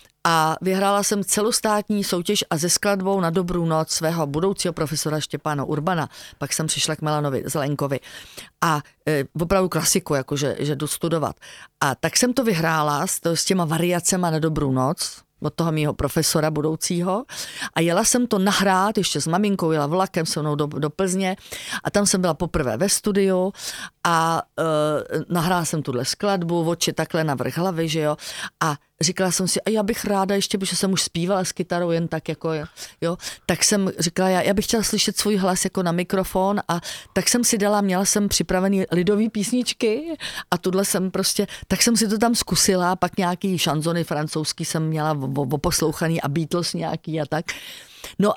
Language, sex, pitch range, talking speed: Slovak, female, 160-195 Hz, 185 wpm